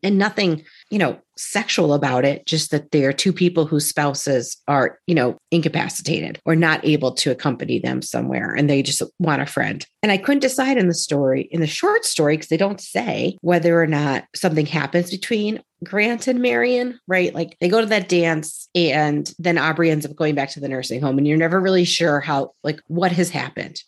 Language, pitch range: English, 150-190 Hz